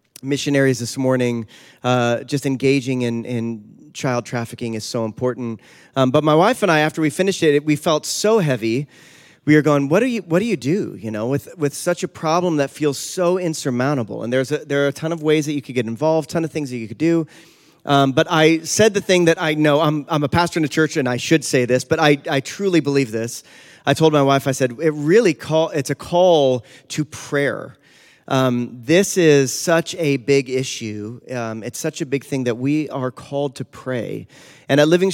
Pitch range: 130-155 Hz